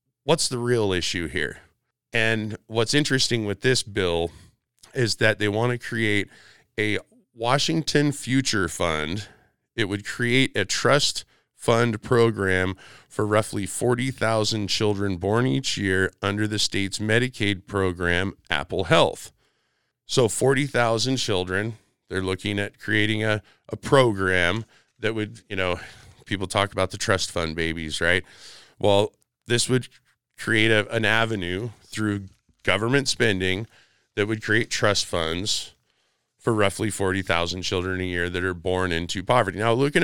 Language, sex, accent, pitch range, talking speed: English, male, American, 95-115 Hz, 140 wpm